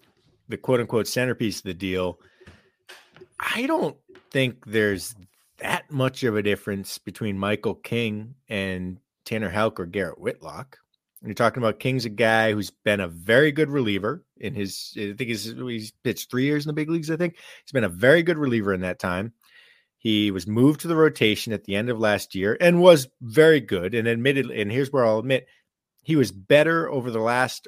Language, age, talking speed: English, 30-49, 195 wpm